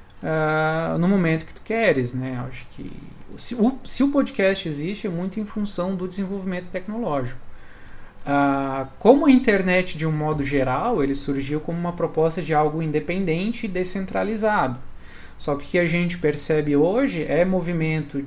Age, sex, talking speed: 20-39, male, 150 wpm